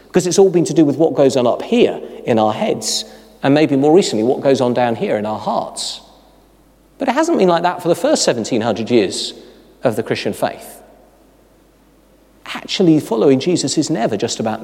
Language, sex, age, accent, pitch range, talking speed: English, male, 40-59, British, 145-215 Hz, 200 wpm